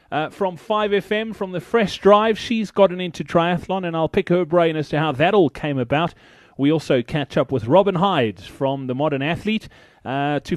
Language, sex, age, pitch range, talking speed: English, male, 30-49, 150-200 Hz, 205 wpm